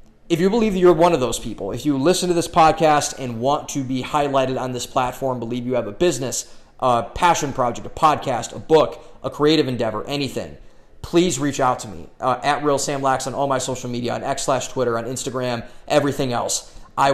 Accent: American